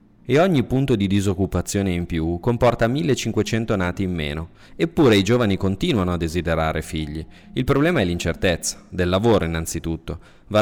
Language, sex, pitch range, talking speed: Italian, male, 85-115 Hz, 155 wpm